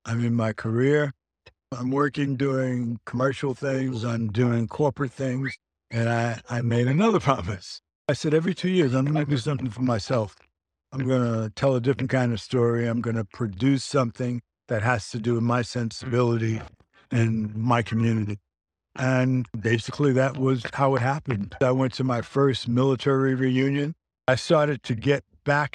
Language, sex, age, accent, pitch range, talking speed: English, male, 60-79, American, 120-135 Hz, 170 wpm